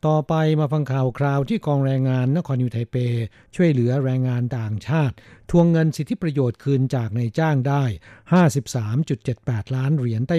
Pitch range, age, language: 120-155 Hz, 60-79, Thai